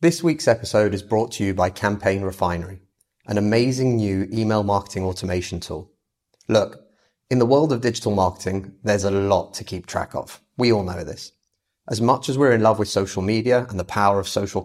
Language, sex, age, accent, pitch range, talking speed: English, male, 30-49, British, 95-115 Hz, 200 wpm